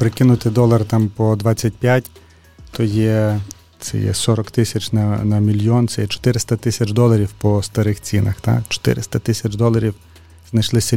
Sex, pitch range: male, 105-115 Hz